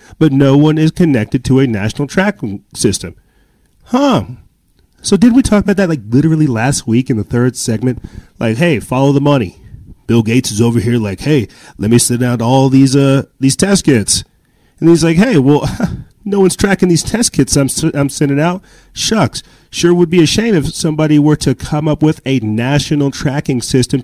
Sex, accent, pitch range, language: male, American, 110-145 Hz, English